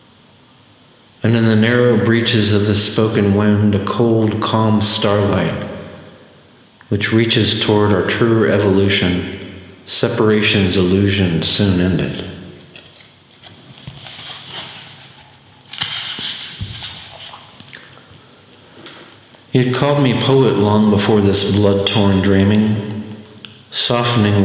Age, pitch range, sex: 50-69, 100-115 Hz, male